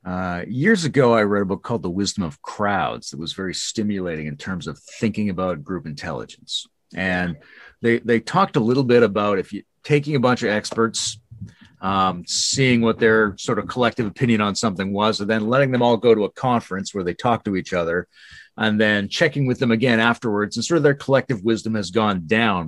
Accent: American